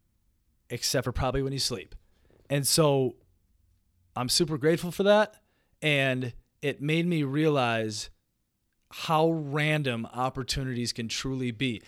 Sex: male